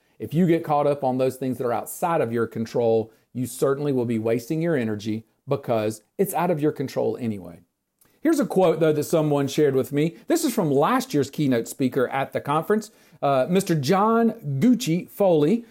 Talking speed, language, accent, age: 200 wpm, English, American, 40-59